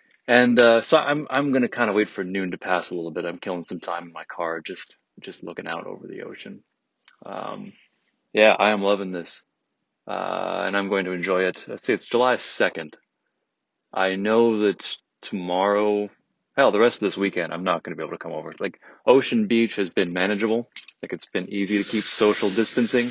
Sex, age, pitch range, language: male, 30-49, 90-110 Hz, English